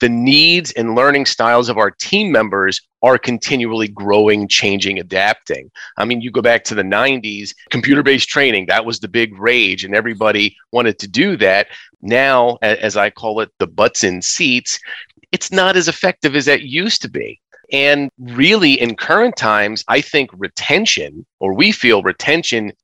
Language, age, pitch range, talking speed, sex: English, 30-49, 110-145 Hz, 170 wpm, male